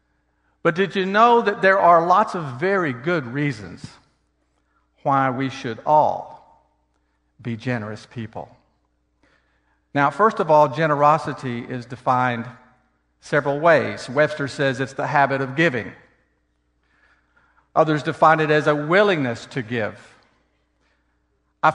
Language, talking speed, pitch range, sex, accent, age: English, 120 wpm, 100-165 Hz, male, American, 50-69